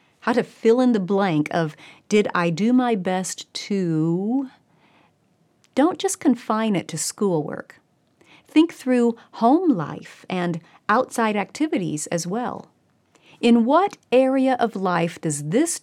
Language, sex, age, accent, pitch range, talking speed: English, female, 40-59, American, 170-250 Hz, 135 wpm